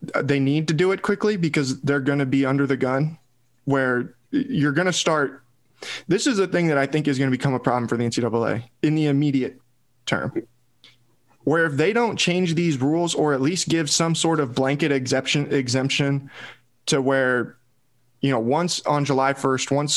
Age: 20-39